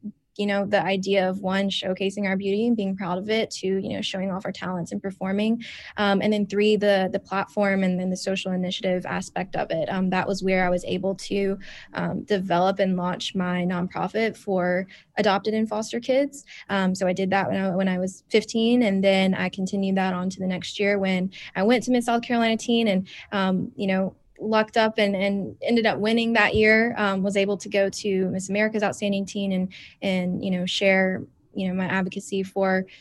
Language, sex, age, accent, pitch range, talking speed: English, female, 10-29, American, 190-205 Hz, 215 wpm